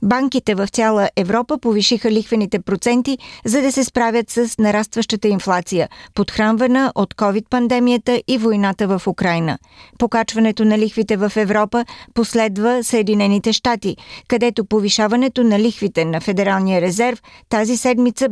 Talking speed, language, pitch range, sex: 125 wpm, Bulgarian, 205-235 Hz, female